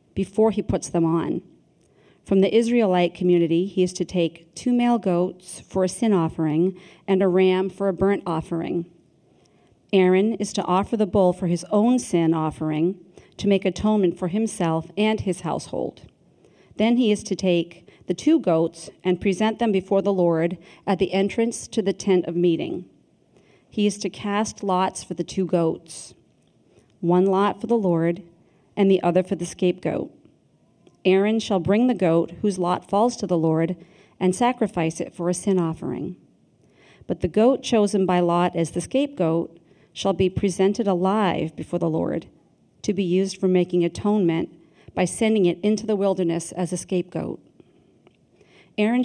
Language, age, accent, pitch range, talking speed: English, 40-59, American, 175-205 Hz, 170 wpm